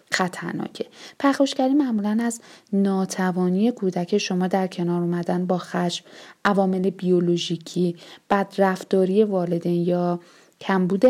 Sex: female